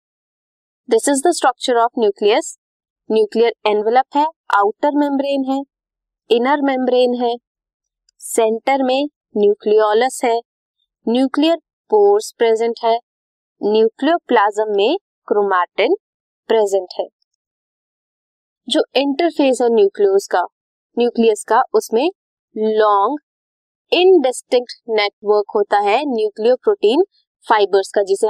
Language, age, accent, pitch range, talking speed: Hindi, 20-39, native, 220-335 Hz, 85 wpm